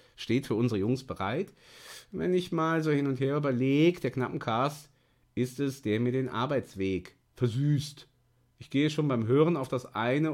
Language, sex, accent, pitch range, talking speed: German, male, German, 120-155 Hz, 180 wpm